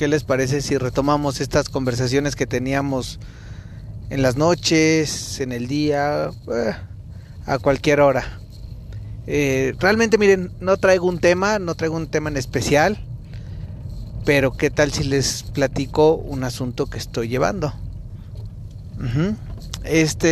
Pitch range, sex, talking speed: 120-150 Hz, male, 125 wpm